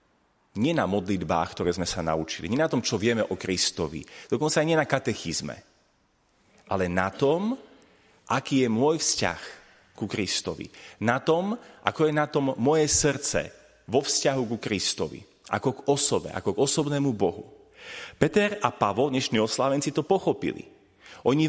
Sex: male